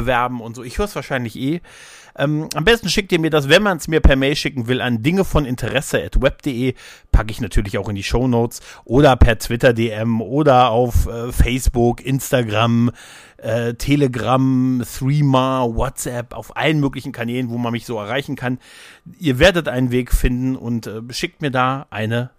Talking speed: 180 wpm